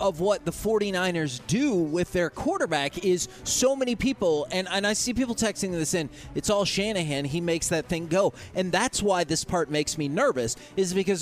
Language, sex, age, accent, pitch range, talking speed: English, male, 30-49, American, 145-185 Hz, 205 wpm